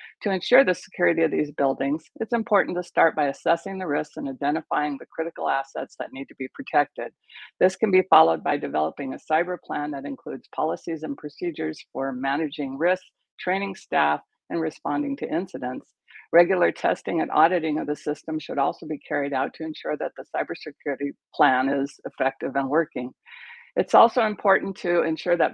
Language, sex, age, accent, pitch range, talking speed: English, female, 60-79, American, 140-180 Hz, 180 wpm